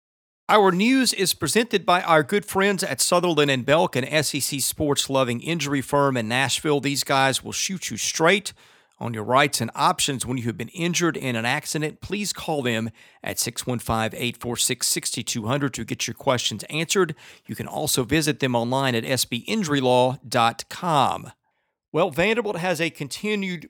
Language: English